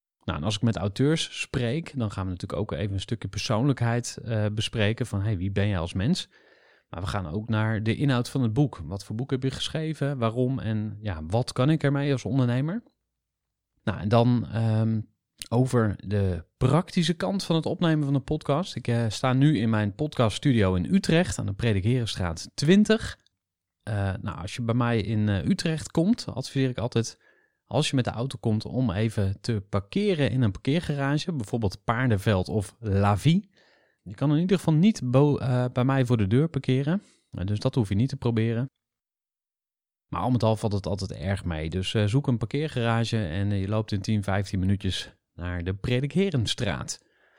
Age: 30-49